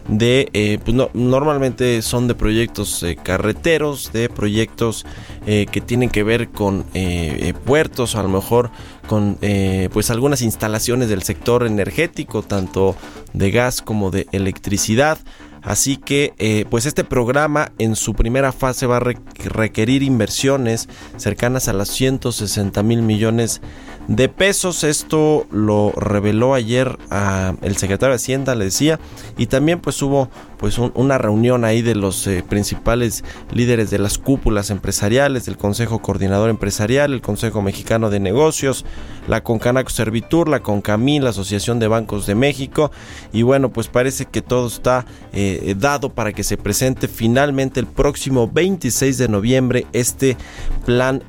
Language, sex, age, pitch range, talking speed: Spanish, male, 20-39, 100-130 Hz, 155 wpm